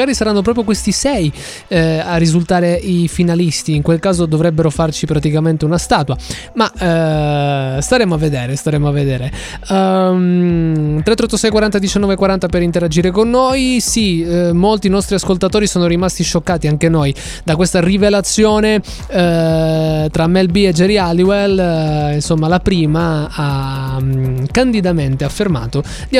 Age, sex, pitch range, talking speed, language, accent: 20-39, male, 155-205 Hz, 150 wpm, Italian, native